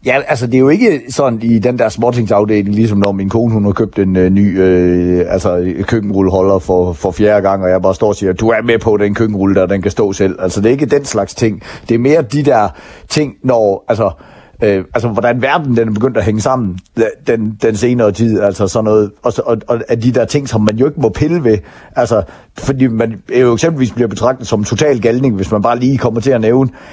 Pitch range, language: 105-130 Hz, Danish